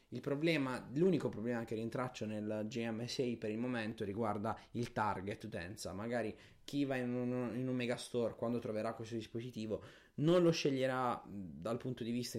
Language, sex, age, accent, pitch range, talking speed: Italian, male, 20-39, native, 105-125 Hz, 160 wpm